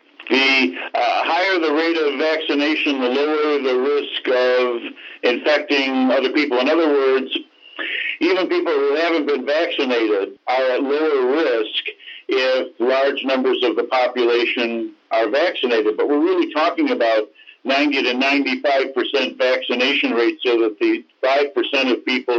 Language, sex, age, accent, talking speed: English, male, 60-79, American, 140 wpm